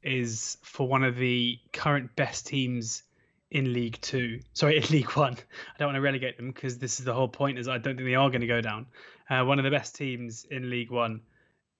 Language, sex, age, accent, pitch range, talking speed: English, male, 20-39, British, 120-140 Hz, 235 wpm